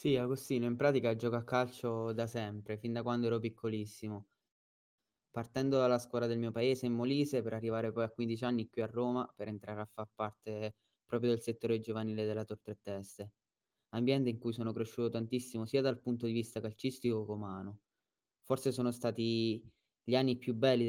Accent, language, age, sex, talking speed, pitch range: native, Italian, 20-39, male, 185 wpm, 110-125 Hz